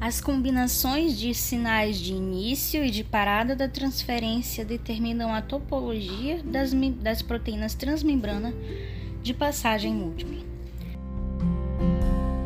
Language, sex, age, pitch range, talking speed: Portuguese, female, 10-29, 185-270 Hz, 100 wpm